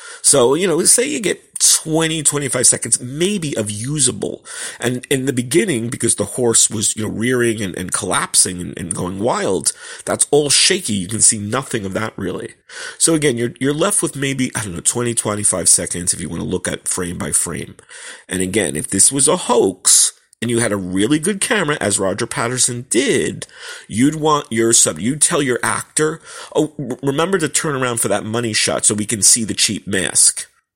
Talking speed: 205 wpm